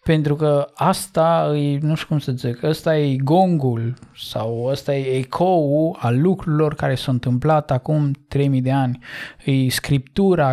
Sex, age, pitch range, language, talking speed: male, 20-39, 135-160 Hz, Romanian, 160 wpm